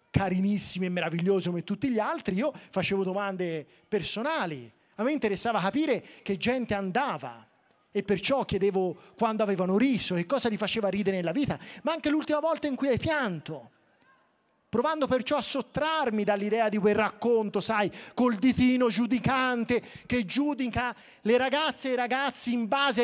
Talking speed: 155 wpm